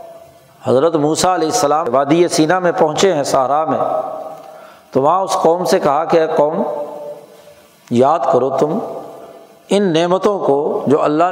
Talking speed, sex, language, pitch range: 150 wpm, male, Urdu, 160-230 Hz